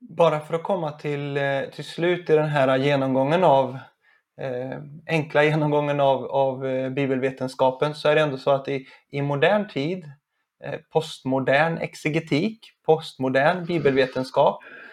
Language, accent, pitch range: Swedish, native, 135-170 Hz